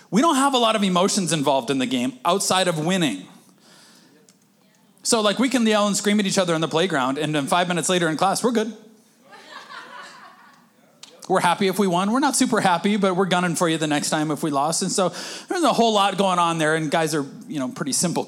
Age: 30-49